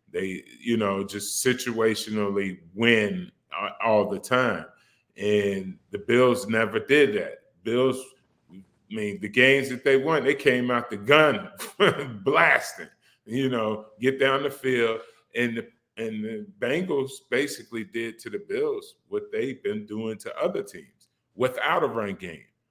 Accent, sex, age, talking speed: American, male, 30-49, 145 wpm